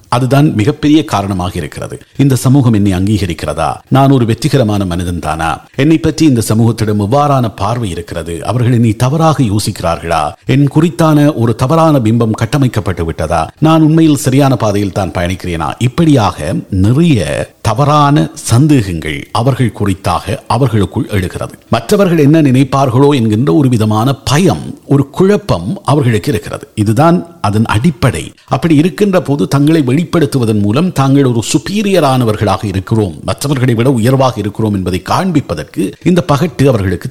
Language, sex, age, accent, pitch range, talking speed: Tamil, male, 50-69, native, 105-150 Hz, 105 wpm